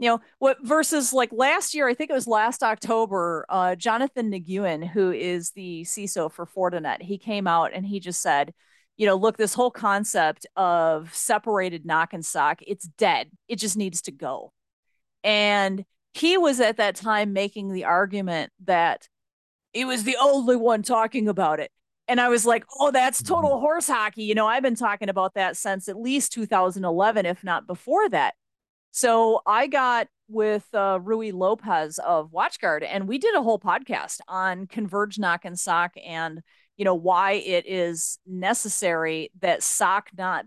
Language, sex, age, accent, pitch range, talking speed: English, female, 40-59, American, 180-230 Hz, 175 wpm